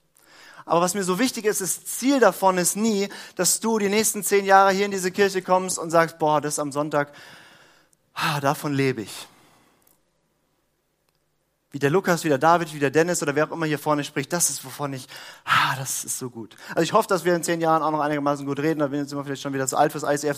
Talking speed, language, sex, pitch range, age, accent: 240 wpm, German, male, 155-190 Hz, 30-49, German